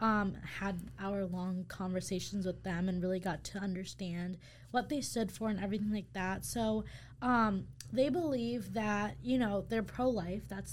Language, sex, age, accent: English, female, 10-29, American